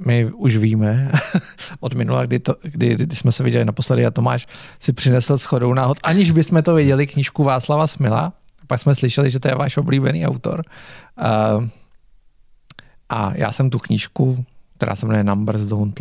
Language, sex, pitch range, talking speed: Czech, male, 115-150 Hz, 175 wpm